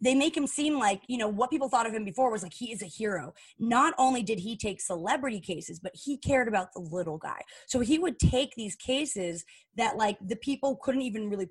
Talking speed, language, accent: 240 wpm, English, American